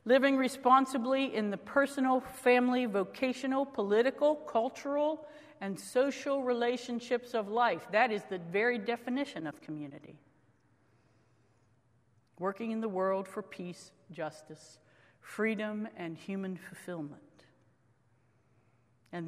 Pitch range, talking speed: 145-230 Hz, 105 wpm